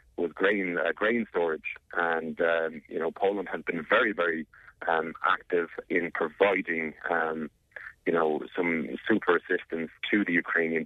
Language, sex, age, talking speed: English, male, 40-59, 150 wpm